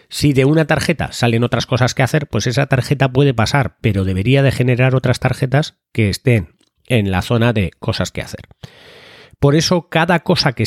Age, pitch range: 30-49, 110-145 Hz